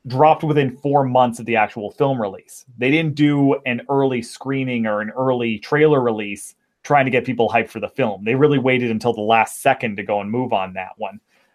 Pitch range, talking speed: 120-145 Hz, 220 wpm